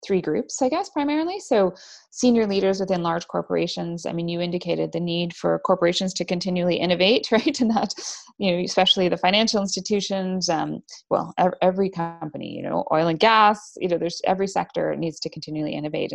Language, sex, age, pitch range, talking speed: English, female, 20-39, 160-190 Hz, 185 wpm